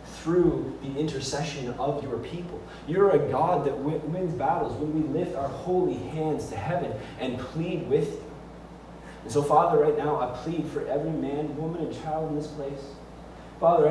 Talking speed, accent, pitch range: 175 wpm, American, 145-165 Hz